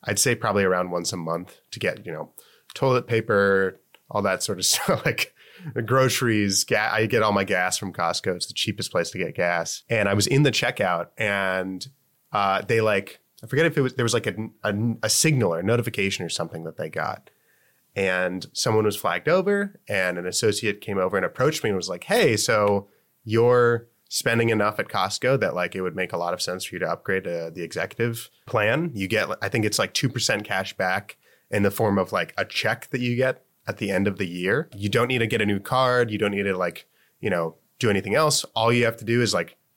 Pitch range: 95-120 Hz